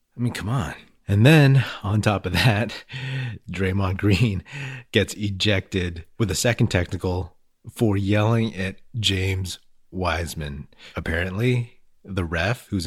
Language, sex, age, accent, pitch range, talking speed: English, male, 30-49, American, 90-110 Hz, 125 wpm